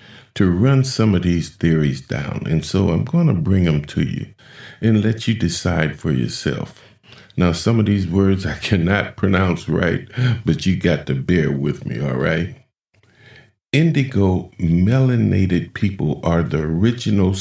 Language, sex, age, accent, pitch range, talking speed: English, male, 50-69, American, 90-110 Hz, 160 wpm